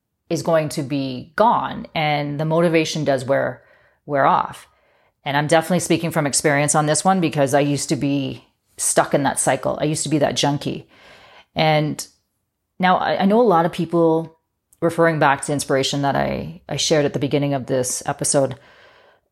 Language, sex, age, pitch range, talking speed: English, female, 30-49, 145-175 Hz, 185 wpm